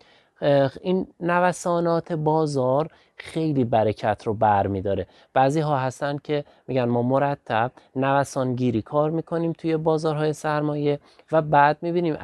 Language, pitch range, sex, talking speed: Persian, 125-155 Hz, male, 120 wpm